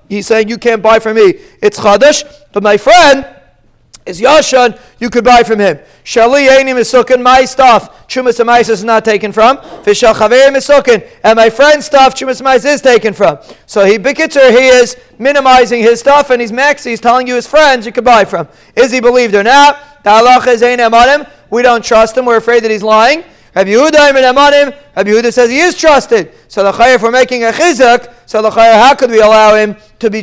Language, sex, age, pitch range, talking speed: English, male, 40-59, 215-255 Hz, 200 wpm